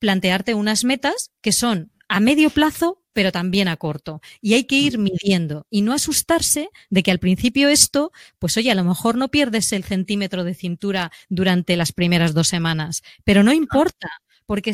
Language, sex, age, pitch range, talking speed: Spanish, female, 20-39, 185-235 Hz, 185 wpm